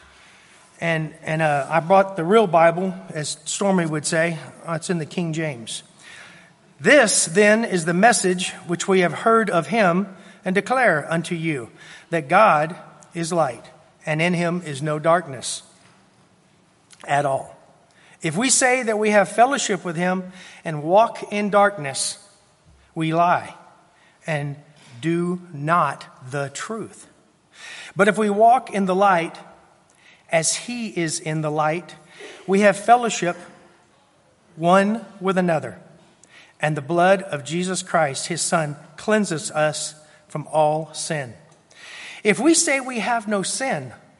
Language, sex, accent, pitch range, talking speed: English, male, American, 155-195 Hz, 140 wpm